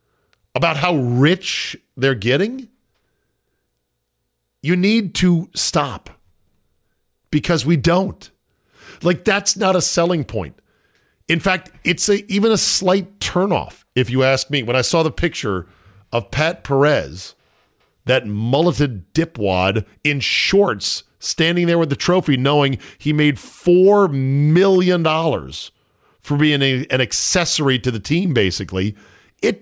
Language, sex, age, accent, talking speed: English, male, 50-69, American, 130 wpm